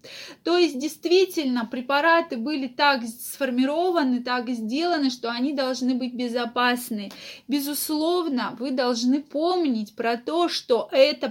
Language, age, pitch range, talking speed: Russian, 20-39, 240-295 Hz, 115 wpm